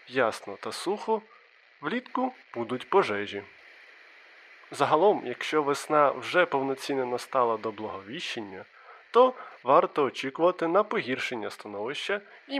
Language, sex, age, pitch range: Ukrainian, male, 20-39, 120-175 Hz